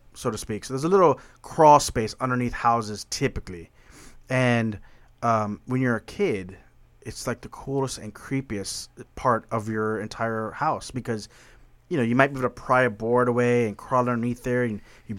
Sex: male